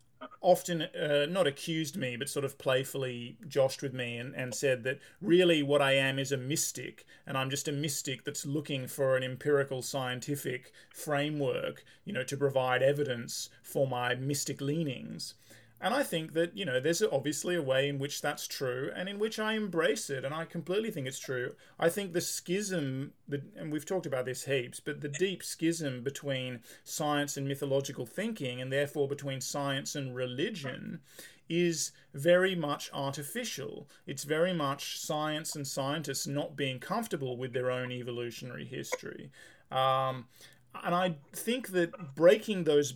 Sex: male